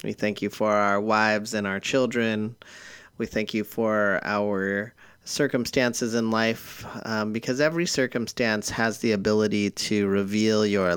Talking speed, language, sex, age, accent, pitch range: 150 wpm, English, male, 30-49, American, 100-120 Hz